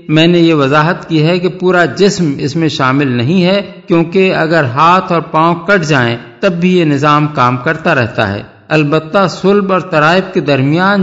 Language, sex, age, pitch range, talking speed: Urdu, male, 50-69, 145-180 Hz, 190 wpm